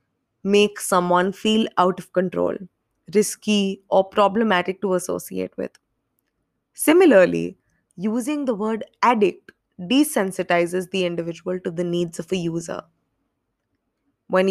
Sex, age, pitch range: female, 20-39, 180-250 Hz